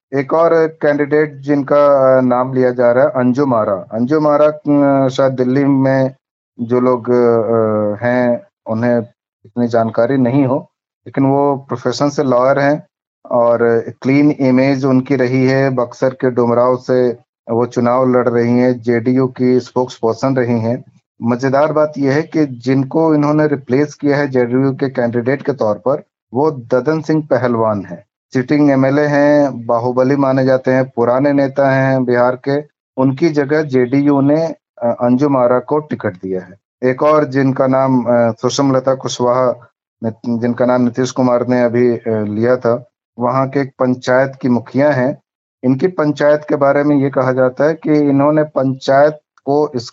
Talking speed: 155 wpm